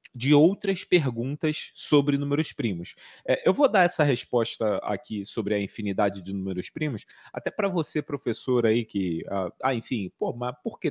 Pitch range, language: 125-165 Hz, Portuguese